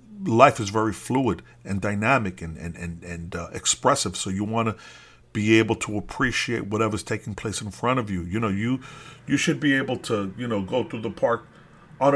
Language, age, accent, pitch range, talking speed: English, 40-59, American, 105-130 Hz, 205 wpm